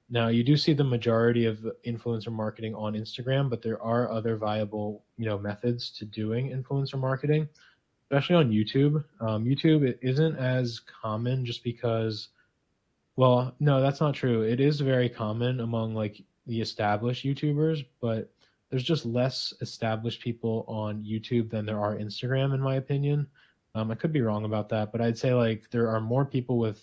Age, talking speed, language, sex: 20-39, 175 wpm, English, male